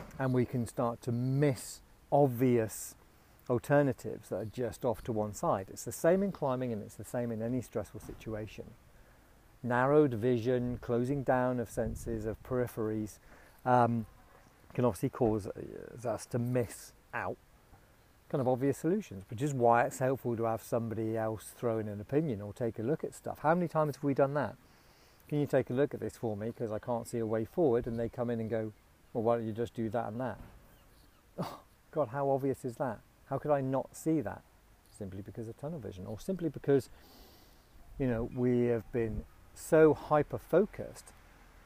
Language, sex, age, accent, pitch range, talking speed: English, male, 40-59, British, 110-135 Hz, 190 wpm